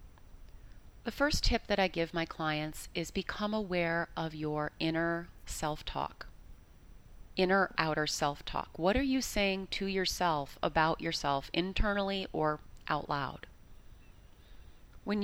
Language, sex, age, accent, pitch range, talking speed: English, female, 30-49, American, 135-190 Hz, 120 wpm